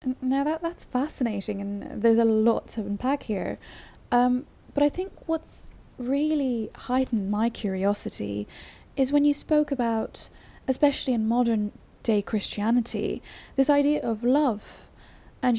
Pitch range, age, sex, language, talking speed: 200-260 Hz, 10-29, female, English, 135 wpm